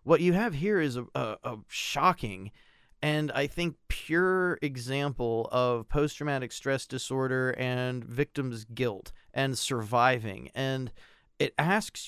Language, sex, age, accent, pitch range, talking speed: English, male, 30-49, American, 125-150 Hz, 135 wpm